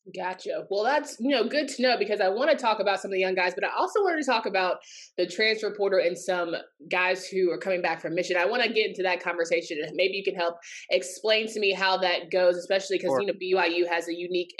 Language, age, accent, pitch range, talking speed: English, 20-39, American, 185-230 Hz, 265 wpm